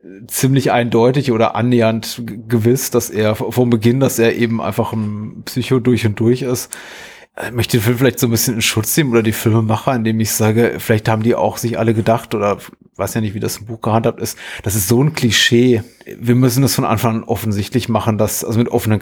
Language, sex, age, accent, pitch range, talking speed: German, male, 30-49, German, 115-130 Hz, 220 wpm